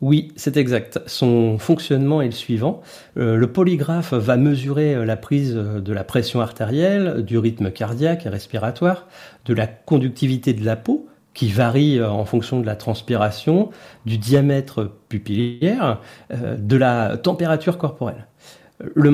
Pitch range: 115-165 Hz